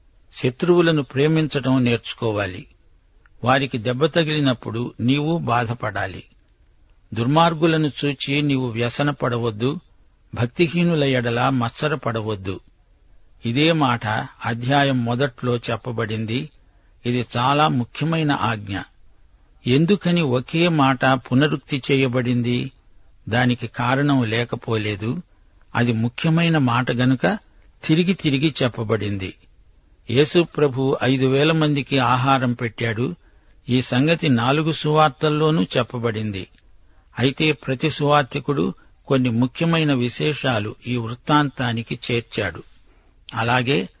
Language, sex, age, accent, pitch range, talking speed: Telugu, male, 60-79, native, 115-145 Hz, 85 wpm